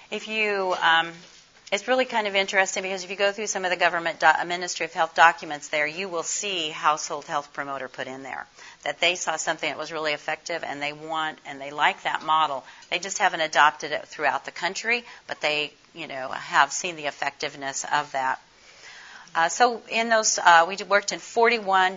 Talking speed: 205 wpm